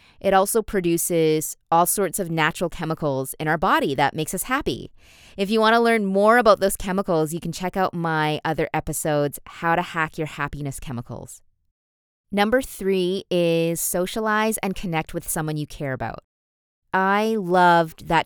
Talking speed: 170 wpm